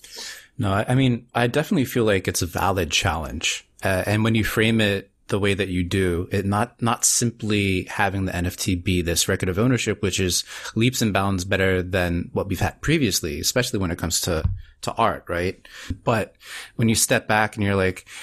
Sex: male